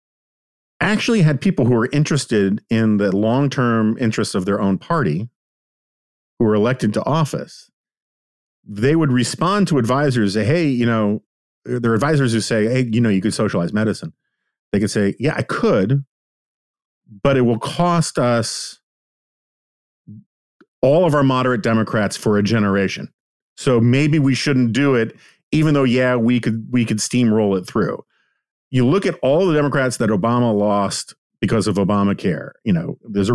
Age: 40-59